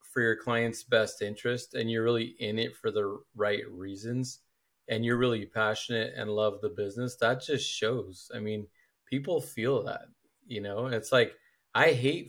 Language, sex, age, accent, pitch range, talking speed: English, male, 30-49, American, 115-175 Hz, 175 wpm